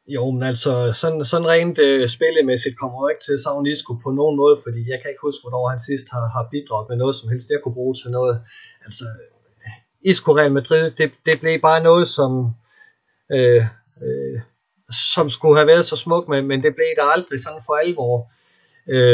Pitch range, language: 120-150 Hz, Danish